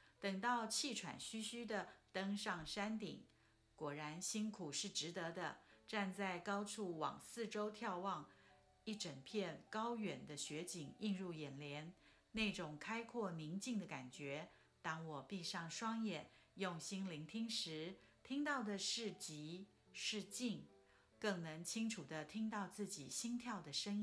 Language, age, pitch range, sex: Chinese, 50-69, 170-220 Hz, female